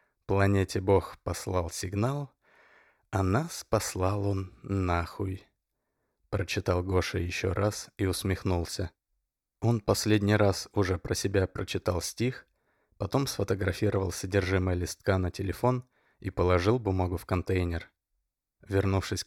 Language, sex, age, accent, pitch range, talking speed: Russian, male, 20-39, native, 95-105 Hz, 110 wpm